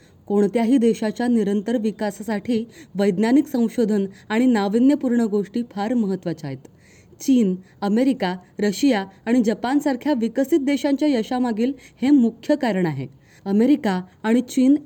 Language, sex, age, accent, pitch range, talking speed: Marathi, female, 20-39, native, 205-270 Hz, 100 wpm